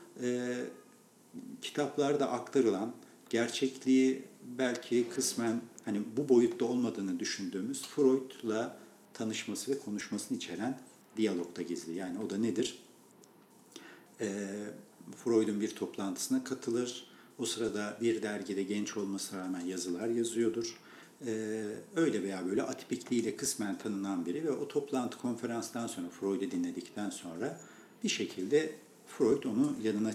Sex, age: male, 50-69